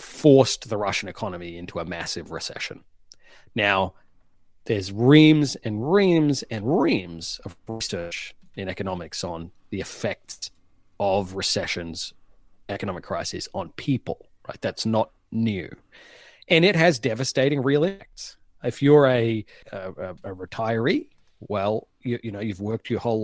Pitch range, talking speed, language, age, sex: 100-135 Hz, 135 wpm, English, 30-49, male